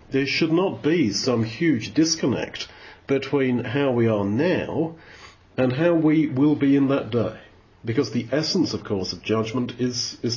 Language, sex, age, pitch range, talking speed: English, male, 40-59, 105-140 Hz, 170 wpm